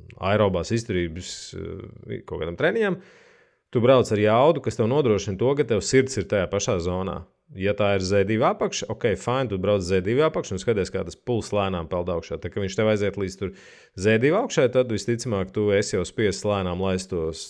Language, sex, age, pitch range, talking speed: English, male, 30-49, 95-115 Hz, 190 wpm